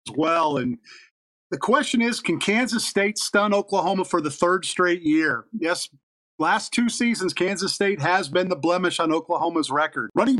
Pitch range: 165-230 Hz